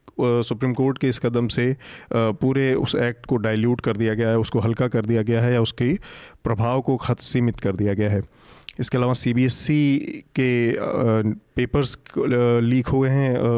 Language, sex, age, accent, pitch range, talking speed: Hindi, male, 30-49, native, 115-130 Hz, 170 wpm